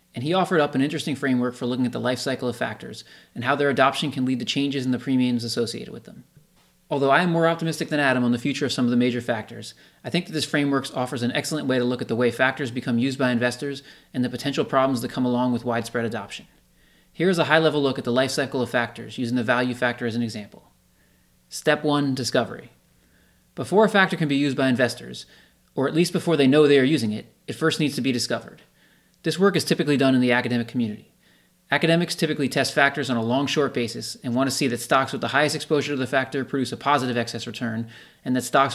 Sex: male